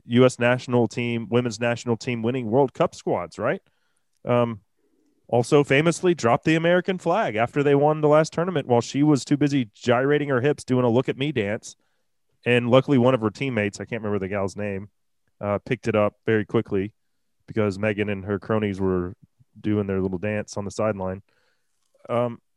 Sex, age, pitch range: male, 30-49, 110-145 Hz